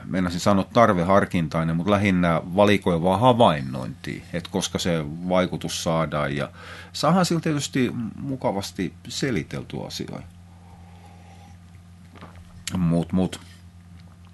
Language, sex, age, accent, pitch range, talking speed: Finnish, male, 40-59, native, 85-100 Hz, 80 wpm